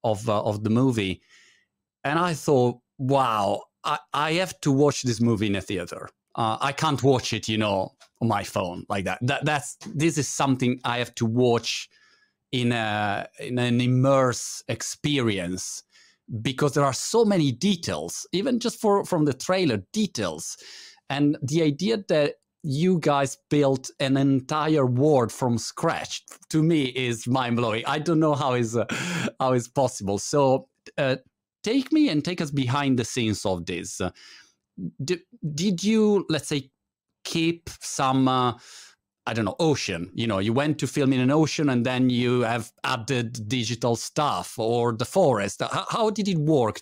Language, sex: Italian, male